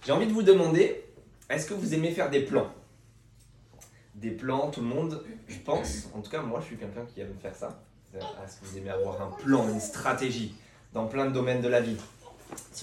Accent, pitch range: French, 115-140 Hz